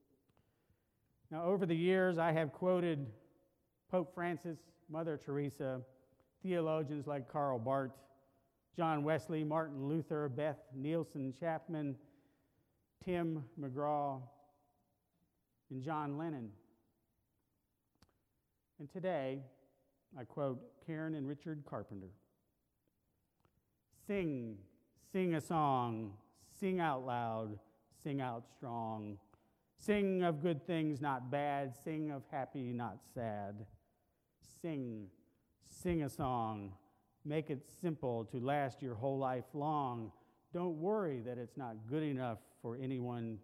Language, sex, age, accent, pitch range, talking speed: English, male, 40-59, American, 115-155 Hz, 110 wpm